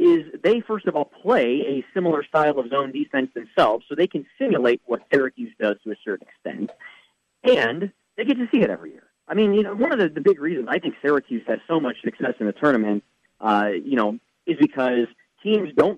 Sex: male